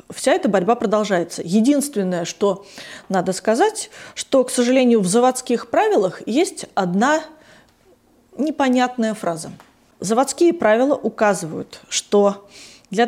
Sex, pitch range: female, 200-280 Hz